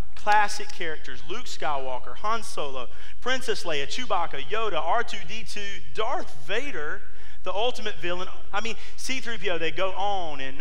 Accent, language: American, English